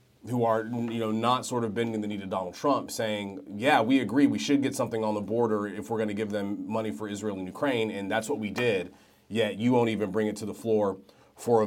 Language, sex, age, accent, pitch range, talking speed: English, male, 30-49, American, 110-135 Hz, 260 wpm